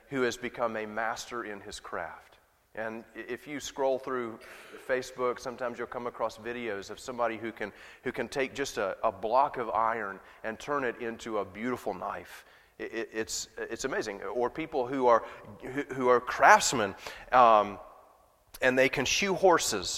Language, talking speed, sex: English, 170 wpm, male